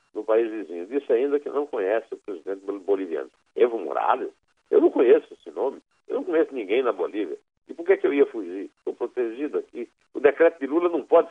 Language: Portuguese